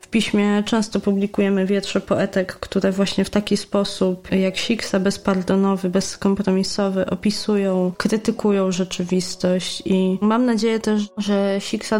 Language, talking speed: Polish, 120 wpm